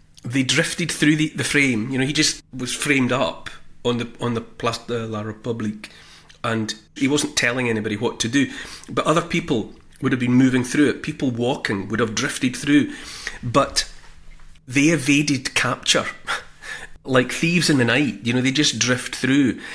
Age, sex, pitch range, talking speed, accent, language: 40-59, male, 115-140 Hz, 180 wpm, British, English